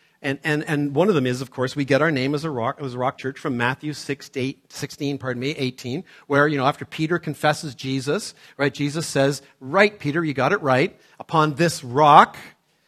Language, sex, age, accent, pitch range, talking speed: English, male, 50-69, American, 130-175 Hz, 220 wpm